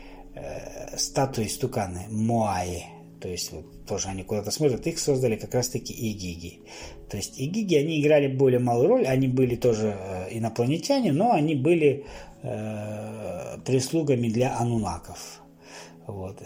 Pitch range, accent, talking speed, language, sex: 110-150 Hz, native, 125 wpm, Russian, male